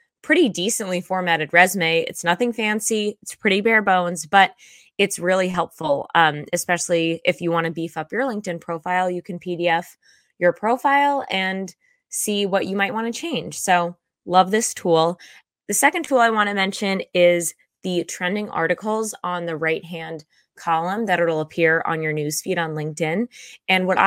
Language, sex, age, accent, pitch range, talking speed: English, female, 20-39, American, 165-205 Hz, 170 wpm